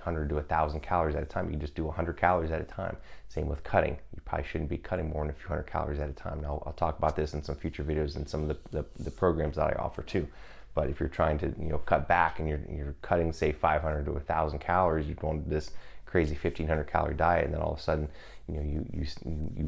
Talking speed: 285 wpm